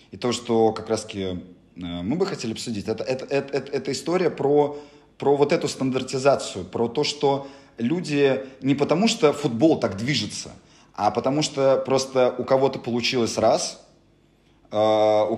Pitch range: 100-130 Hz